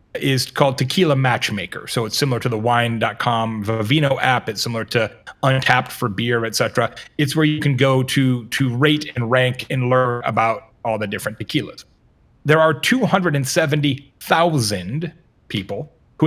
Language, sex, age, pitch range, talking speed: English, male, 30-49, 125-155 Hz, 150 wpm